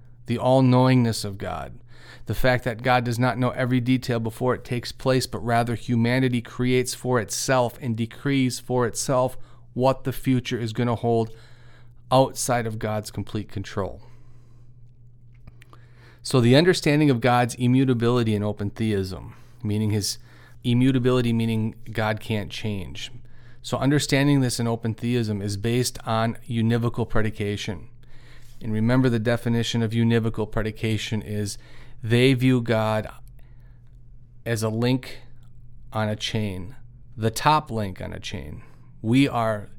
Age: 40-59